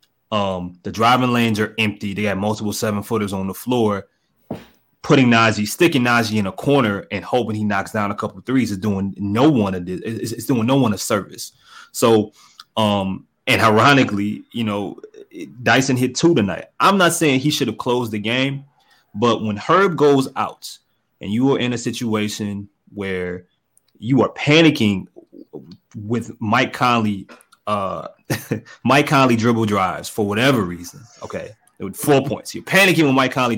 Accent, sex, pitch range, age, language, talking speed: American, male, 100-130 Hz, 30-49, English, 170 wpm